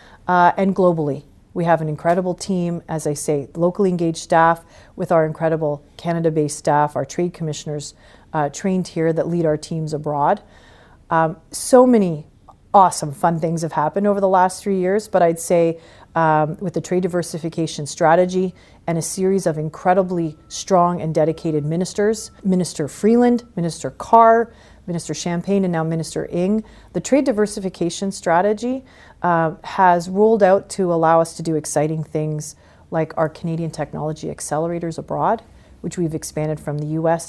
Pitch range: 155-190 Hz